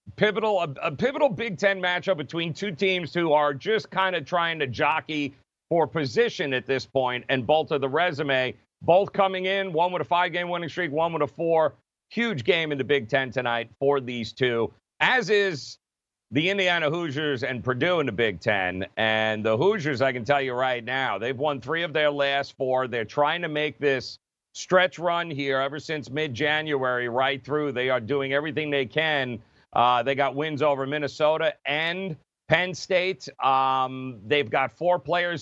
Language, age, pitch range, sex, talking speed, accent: English, 50-69, 140-175 Hz, male, 190 wpm, American